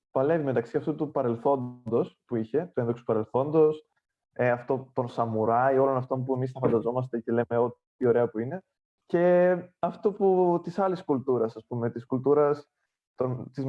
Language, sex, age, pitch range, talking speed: Greek, male, 20-39, 120-150 Hz, 160 wpm